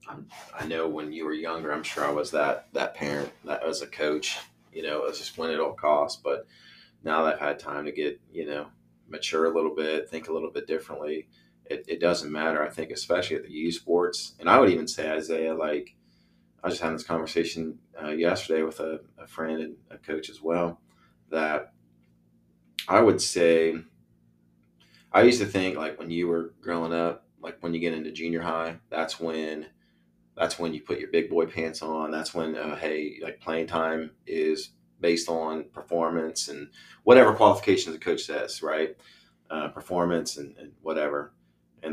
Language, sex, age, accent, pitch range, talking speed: English, male, 30-49, American, 75-85 Hz, 195 wpm